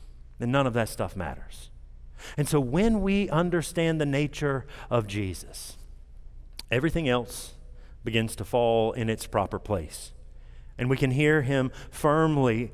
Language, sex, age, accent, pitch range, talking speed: English, male, 40-59, American, 100-170 Hz, 140 wpm